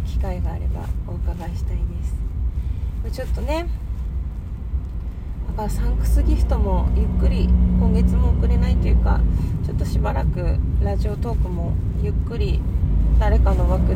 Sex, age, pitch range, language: female, 20-39, 75-90 Hz, Japanese